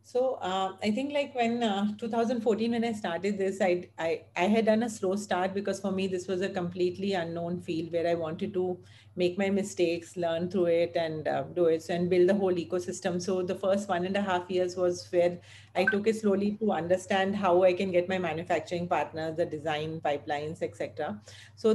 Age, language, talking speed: 40-59, English, 210 wpm